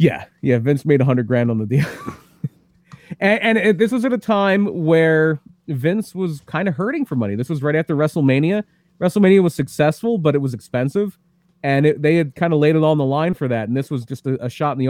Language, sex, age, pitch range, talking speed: English, male, 30-49, 130-175 Hz, 230 wpm